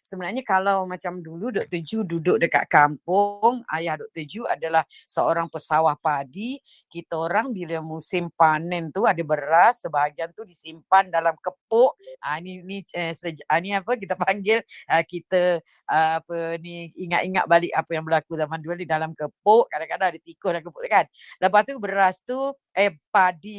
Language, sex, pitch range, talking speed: Indonesian, female, 165-210 Hz, 165 wpm